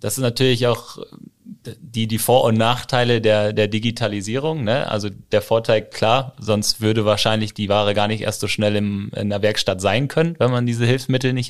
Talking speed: 200 wpm